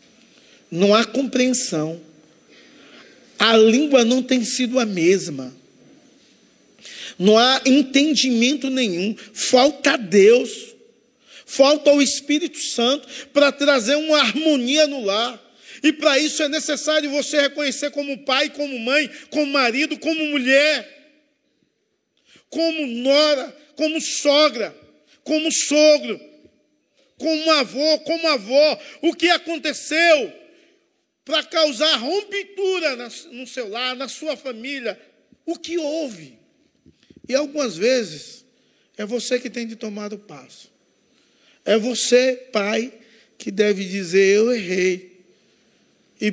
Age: 50-69